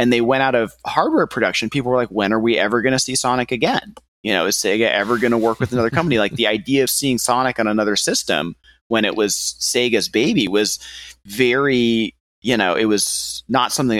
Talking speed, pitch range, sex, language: 225 wpm, 105-135 Hz, male, English